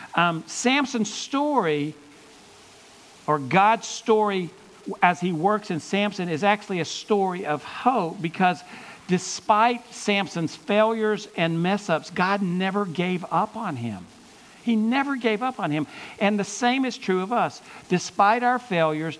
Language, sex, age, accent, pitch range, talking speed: English, male, 60-79, American, 150-205 Hz, 145 wpm